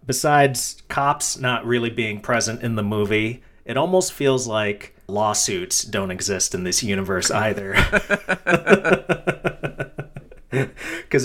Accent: American